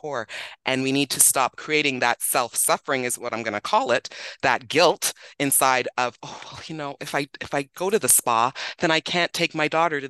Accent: American